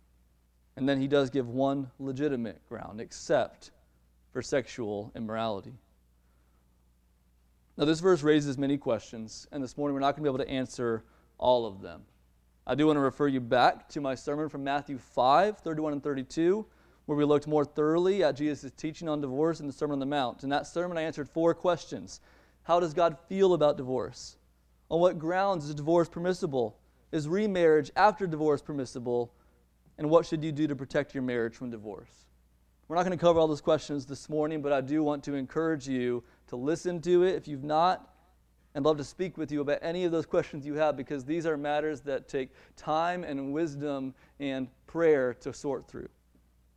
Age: 30-49